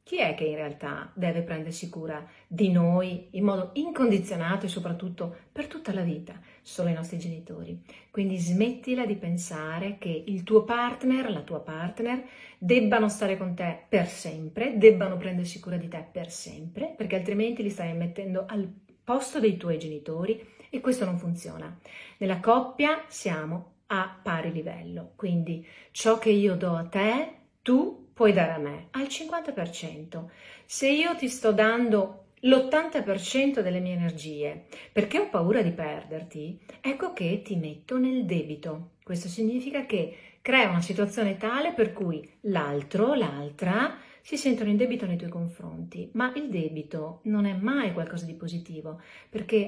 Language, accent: Italian, native